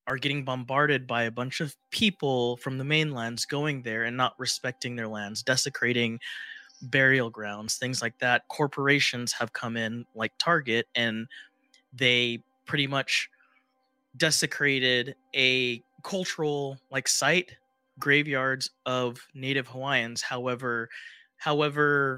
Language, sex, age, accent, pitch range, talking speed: English, male, 20-39, American, 120-145 Hz, 120 wpm